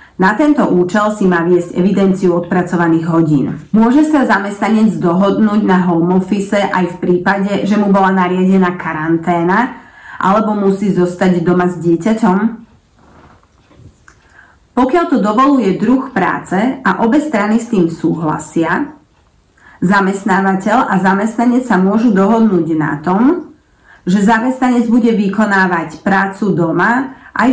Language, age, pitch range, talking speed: Slovak, 30-49, 180-230 Hz, 120 wpm